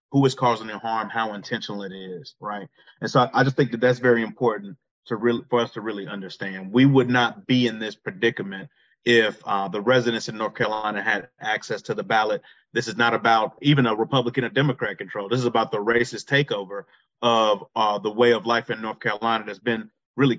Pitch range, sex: 110-125 Hz, male